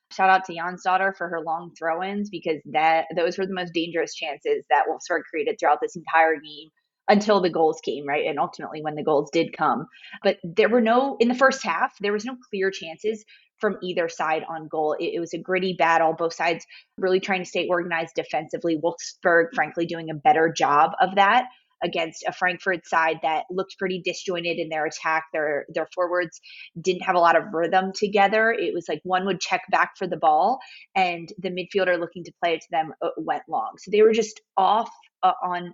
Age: 20-39